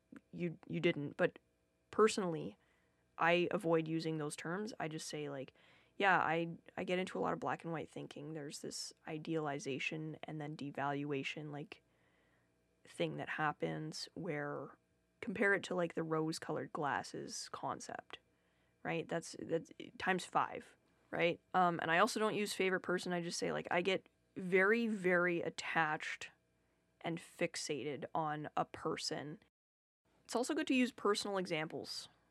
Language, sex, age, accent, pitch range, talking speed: English, female, 20-39, American, 150-205 Hz, 150 wpm